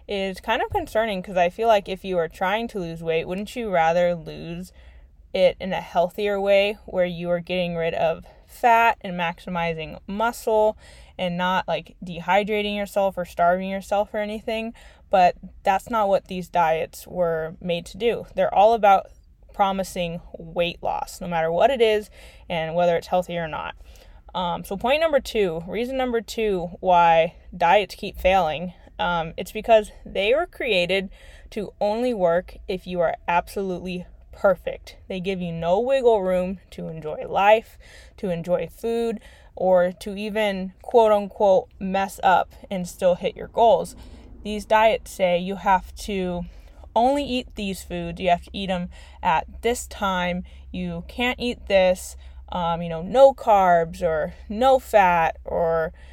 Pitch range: 175-215 Hz